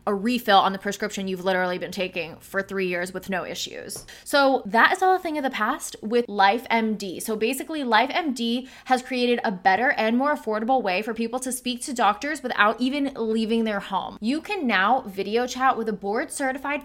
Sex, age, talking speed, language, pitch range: female, 10-29, 205 wpm, English, 205-255 Hz